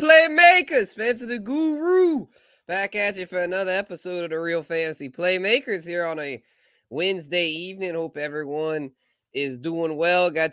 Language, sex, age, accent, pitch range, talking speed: English, male, 20-39, American, 145-195 Hz, 150 wpm